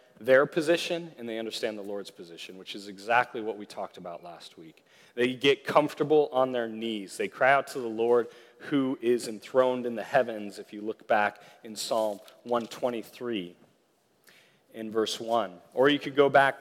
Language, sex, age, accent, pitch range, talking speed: English, male, 30-49, American, 105-135 Hz, 180 wpm